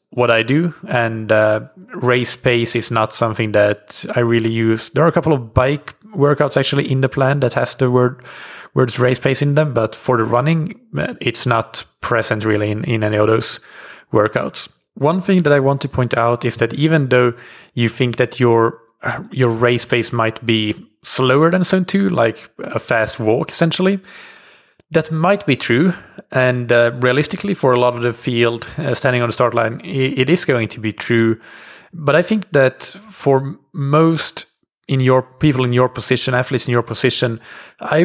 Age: 20-39